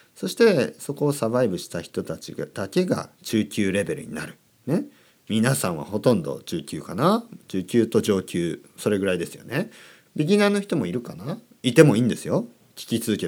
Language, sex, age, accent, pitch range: Japanese, male, 40-59, native, 110-175 Hz